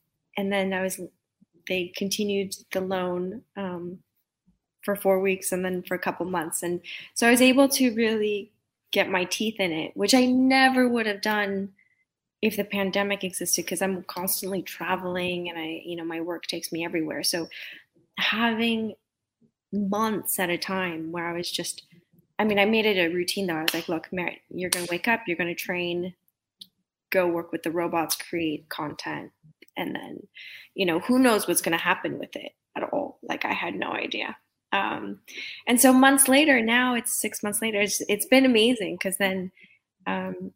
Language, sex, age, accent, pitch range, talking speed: English, female, 20-39, American, 180-215 Hz, 190 wpm